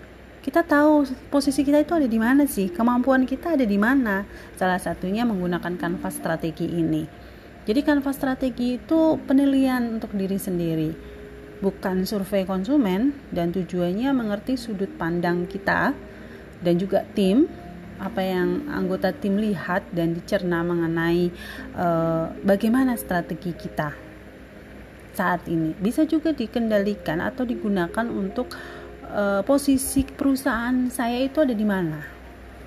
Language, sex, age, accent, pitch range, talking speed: Indonesian, female, 30-49, native, 170-250 Hz, 125 wpm